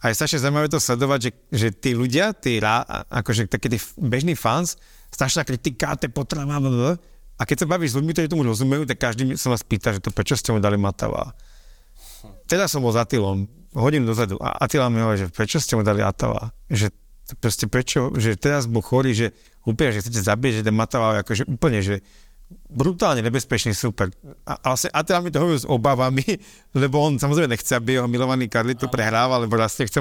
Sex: male